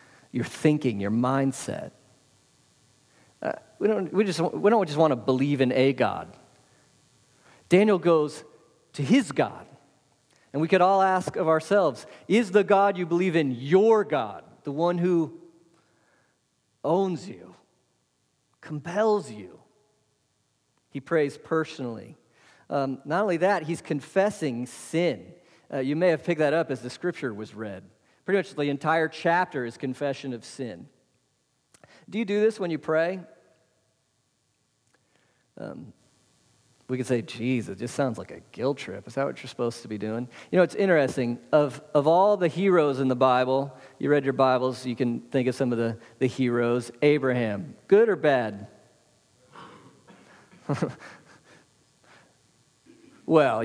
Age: 40-59